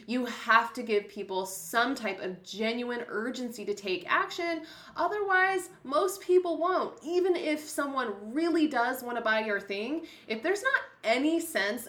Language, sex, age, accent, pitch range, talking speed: English, female, 20-39, American, 200-265 Hz, 155 wpm